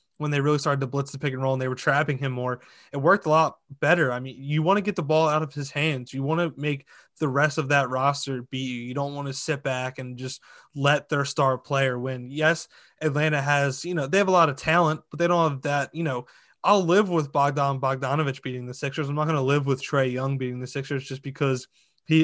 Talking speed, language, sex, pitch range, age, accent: 260 wpm, English, male, 135-160 Hz, 20-39, American